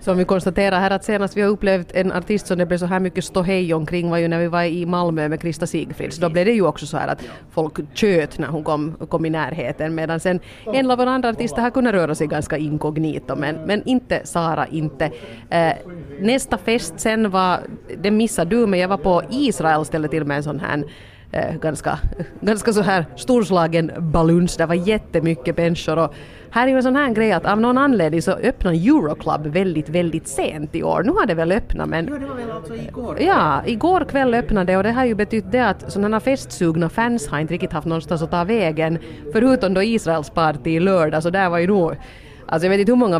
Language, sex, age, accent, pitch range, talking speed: Finnish, female, 30-49, native, 160-195 Hz, 215 wpm